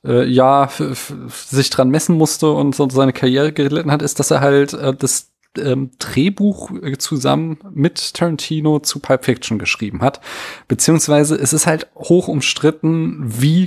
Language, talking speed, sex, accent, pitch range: German, 140 wpm, male, German, 120-155 Hz